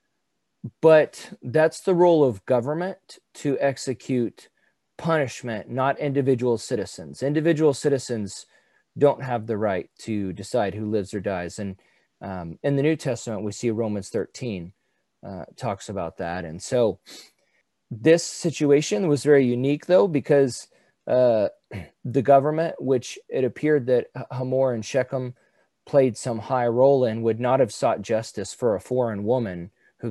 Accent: American